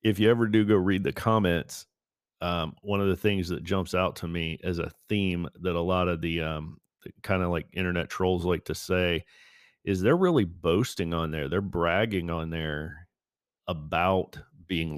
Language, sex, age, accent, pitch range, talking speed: English, male, 40-59, American, 85-95 Hz, 190 wpm